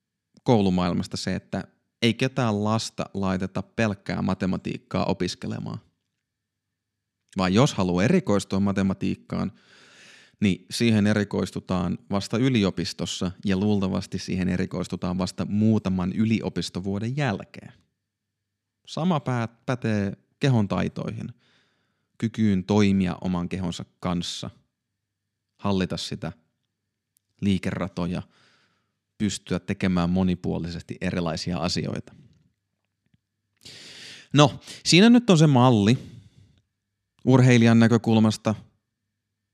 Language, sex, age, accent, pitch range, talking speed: Finnish, male, 30-49, native, 90-110 Hz, 80 wpm